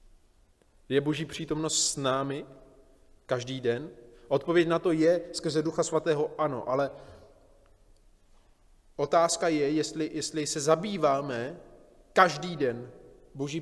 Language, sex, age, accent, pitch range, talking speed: Czech, male, 30-49, native, 130-205 Hz, 110 wpm